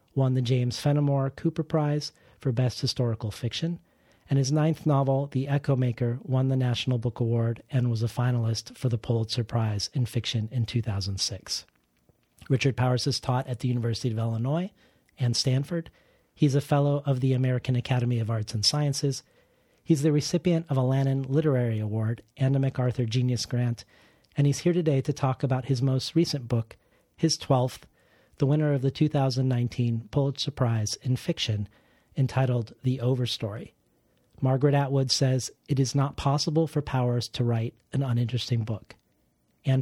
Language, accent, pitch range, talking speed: English, American, 120-140 Hz, 165 wpm